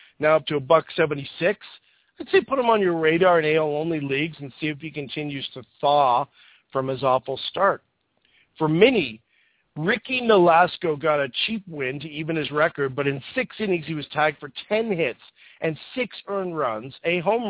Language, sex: English, male